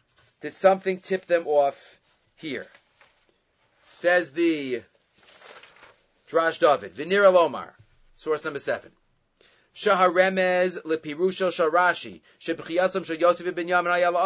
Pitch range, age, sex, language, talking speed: 165-225 Hz, 30-49, male, English, 65 wpm